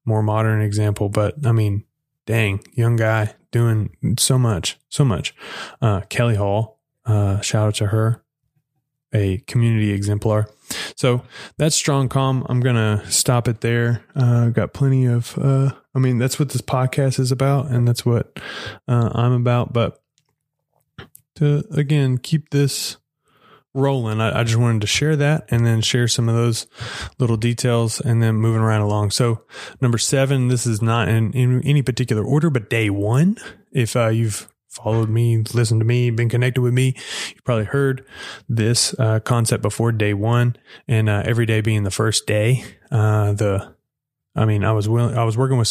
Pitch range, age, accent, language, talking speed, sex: 110-130 Hz, 20-39, American, English, 175 wpm, male